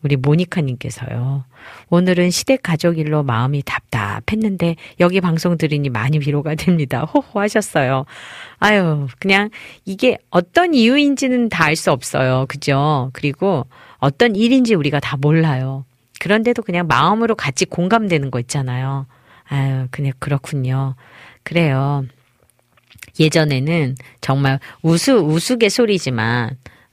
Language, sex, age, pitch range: Korean, female, 40-59, 135-190 Hz